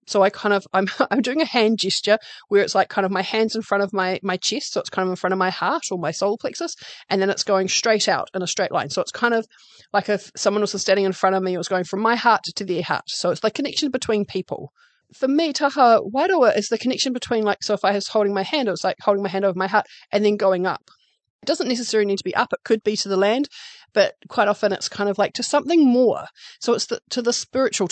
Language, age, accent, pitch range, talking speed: English, 30-49, Australian, 190-230 Hz, 285 wpm